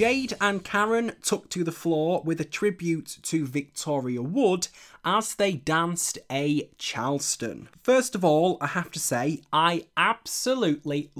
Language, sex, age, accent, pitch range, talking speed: English, male, 20-39, British, 150-200 Hz, 145 wpm